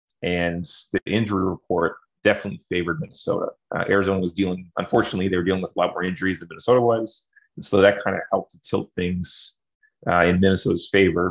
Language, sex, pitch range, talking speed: English, male, 90-105 Hz, 190 wpm